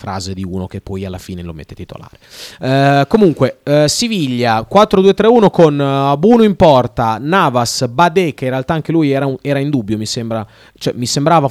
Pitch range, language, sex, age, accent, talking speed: 105-140 Hz, Italian, male, 30-49, native, 195 wpm